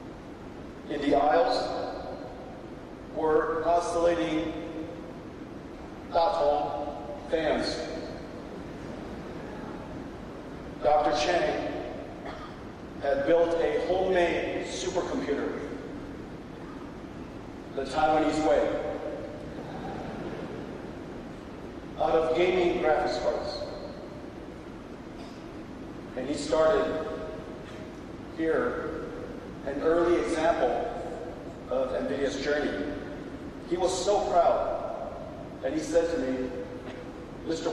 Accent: American